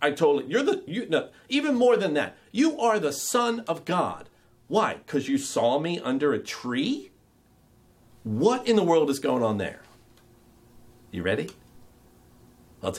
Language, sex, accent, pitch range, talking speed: English, male, American, 110-145 Hz, 165 wpm